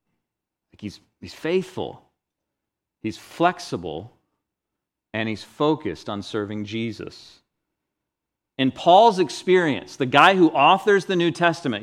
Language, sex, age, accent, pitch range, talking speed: English, male, 40-59, American, 110-175 Hz, 105 wpm